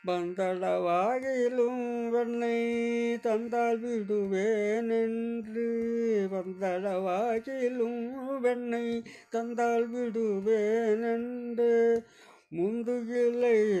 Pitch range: 185-230 Hz